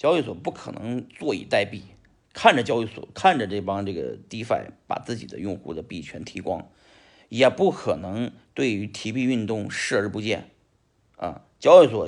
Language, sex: Chinese, male